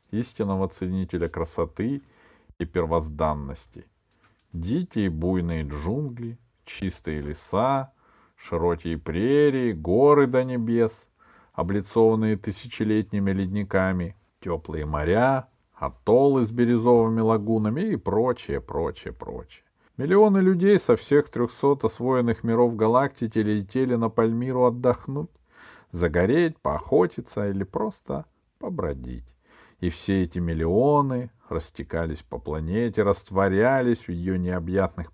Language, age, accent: Russian, 40-59, native